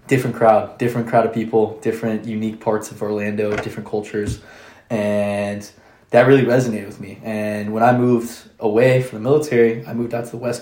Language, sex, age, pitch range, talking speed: English, male, 20-39, 105-115 Hz, 185 wpm